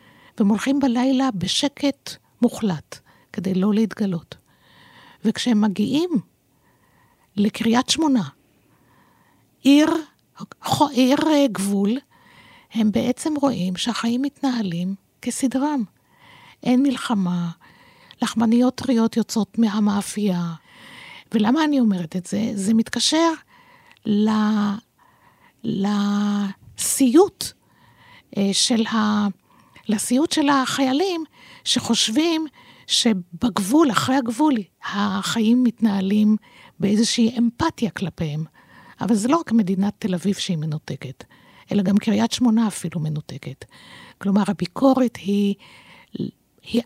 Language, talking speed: Hebrew, 90 wpm